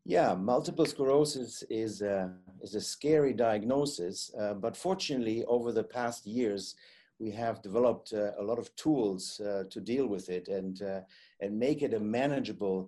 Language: Arabic